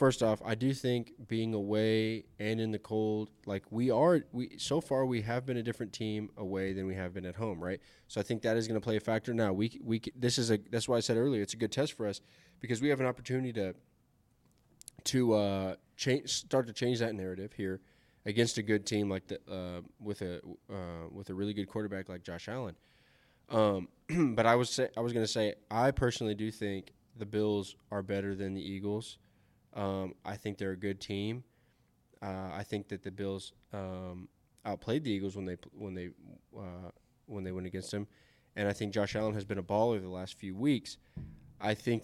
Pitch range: 100-115 Hz